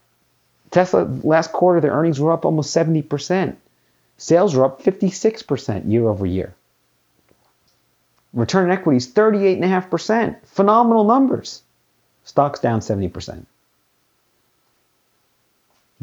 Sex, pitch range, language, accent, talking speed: male, 110-175 Hz, English, American, 95 wpm